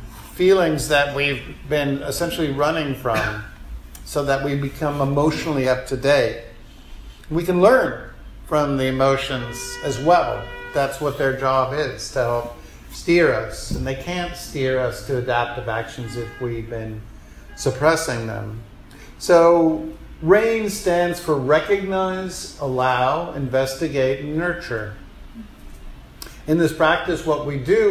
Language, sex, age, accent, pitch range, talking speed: English, male, 50-69, American, 110-155 Hz, 125 wpm